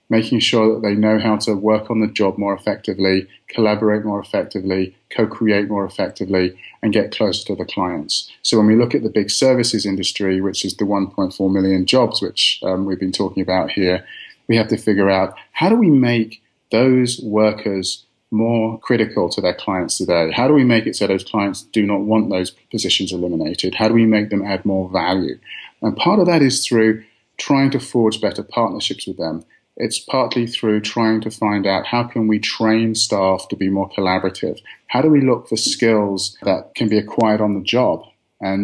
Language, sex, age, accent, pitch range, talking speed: English, male, 30-49, British, 100-115 Hz, 200 wpm